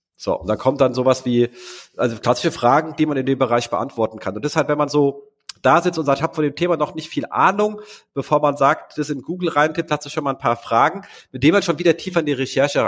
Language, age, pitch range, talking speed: German, 40-59, 115-160 Hz, 270 wpm